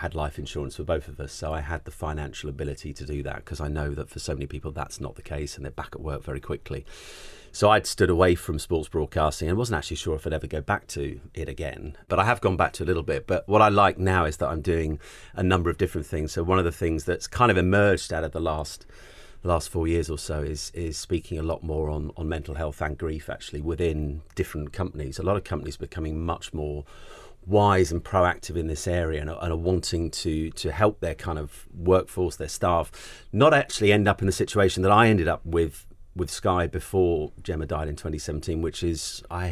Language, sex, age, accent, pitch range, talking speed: English, male, 30-49, British, 75-90 Hz, 245 wpm